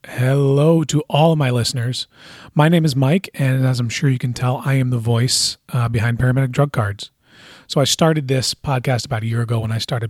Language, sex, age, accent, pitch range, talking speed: English, male, 30-49, American, 115-140 Hz, 225 wpm